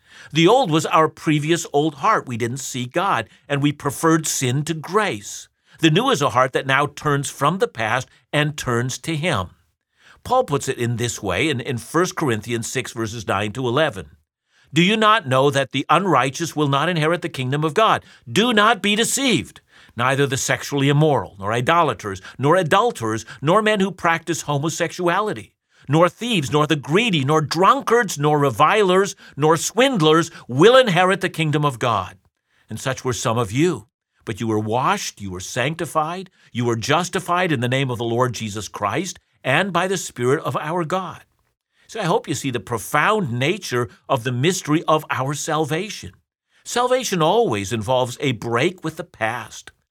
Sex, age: male, 50-69